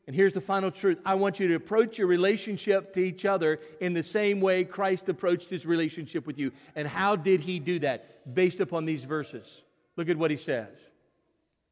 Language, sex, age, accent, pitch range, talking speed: English, male, 50-69, American, 185-225 Hz, 205 wpm